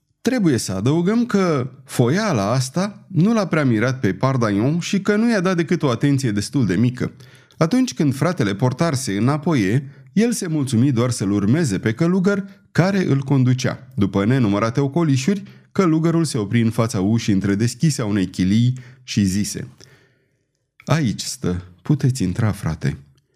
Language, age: Romanian, 30-49